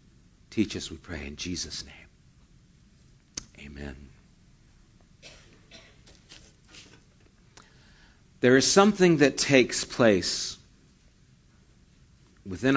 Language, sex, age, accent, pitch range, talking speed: English, male, 50-69, American, 115-155 Hz, 70 wpm